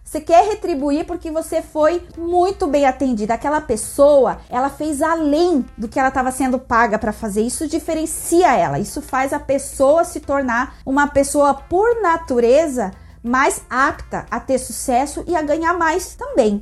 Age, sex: 30-49, female